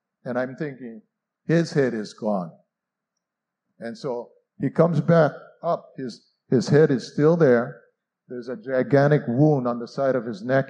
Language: English